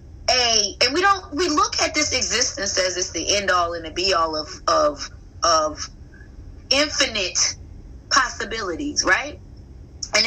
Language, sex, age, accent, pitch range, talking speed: English, female, 20-39, American, 220-340 Hz, 145 wpm